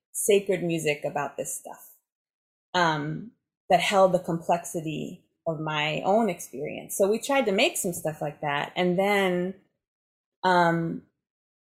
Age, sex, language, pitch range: 20-39, female, English, 160-190 Hz